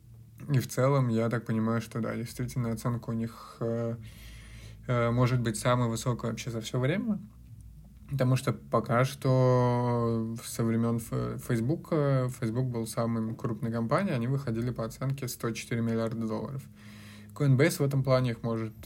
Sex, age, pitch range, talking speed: male, 20-39, 115-125 Hz, 145 wpm